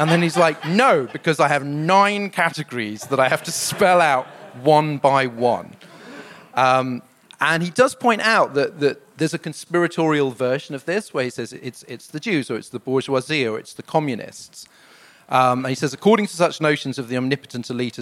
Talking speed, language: 200 wpm, English